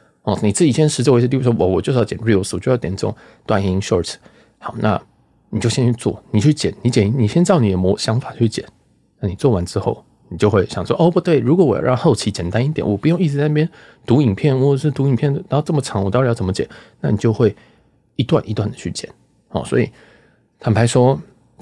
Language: Chinese